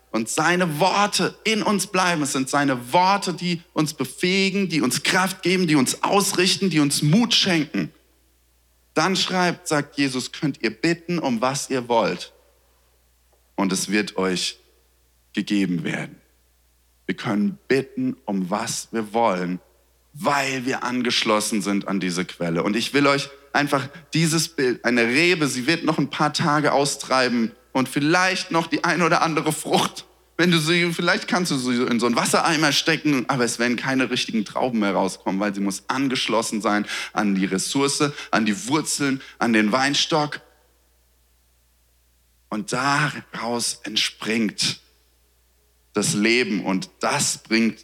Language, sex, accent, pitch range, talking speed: German, male, German, 95-155 Hz, 150 wpm